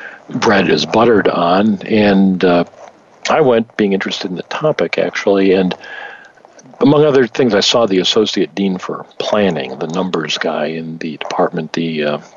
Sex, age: male, 50-69